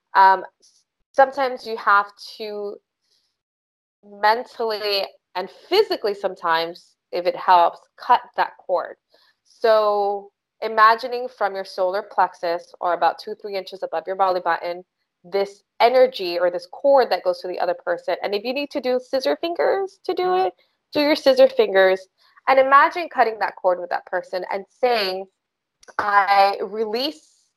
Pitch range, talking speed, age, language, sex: 185-250 Hz, 150 wpm, 20-39, English, female